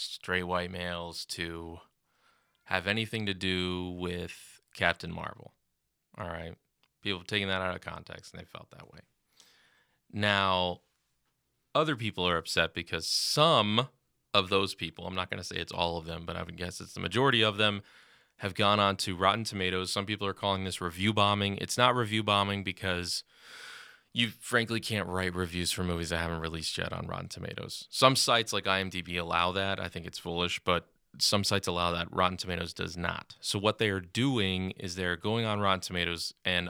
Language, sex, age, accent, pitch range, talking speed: English, male, 20-39, American, 90-105 Hz, 190 wpm